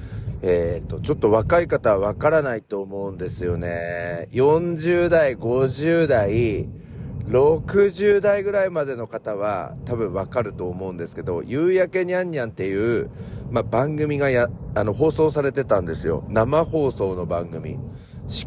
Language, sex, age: Japanese, male, 40-59